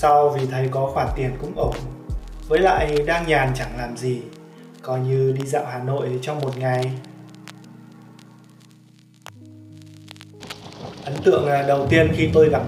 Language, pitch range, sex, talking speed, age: Vietnamese, 130-165 Hz, male, 145 wpm, 20-39